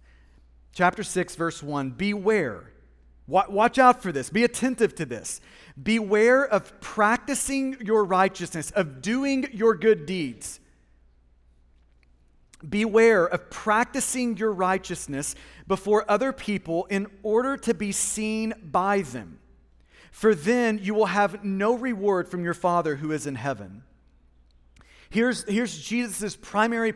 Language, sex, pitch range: English, male, 165-235 Hz